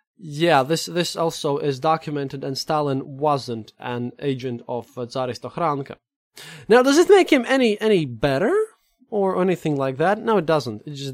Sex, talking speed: male, 160 wpm